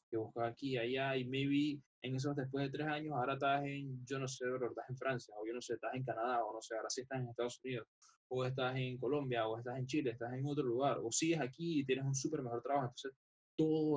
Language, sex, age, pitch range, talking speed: Spanish, male, 10-29, 120-140 Hz, 260 wpm